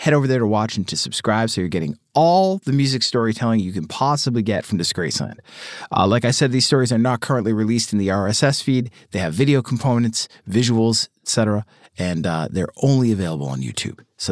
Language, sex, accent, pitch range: English, male, American, 105-125 Hz